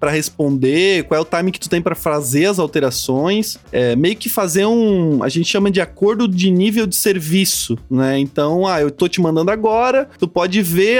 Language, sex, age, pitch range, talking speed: Portuguese, male, 20-39, 160-210 Hz, 205 wpm